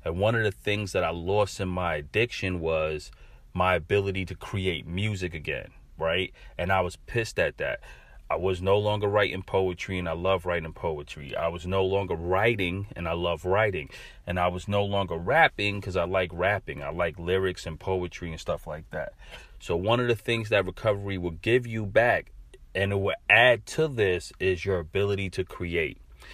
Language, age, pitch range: English, 30-49, 85-100 Hz